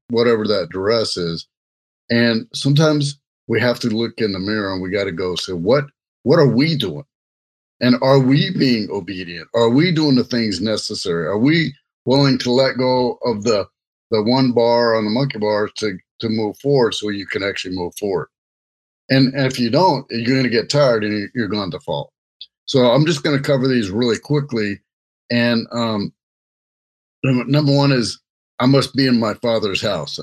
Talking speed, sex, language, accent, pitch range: 190 wpm, male, English, American, 110-135 Hz